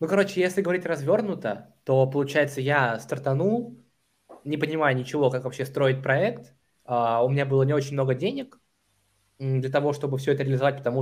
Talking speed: 165 wpm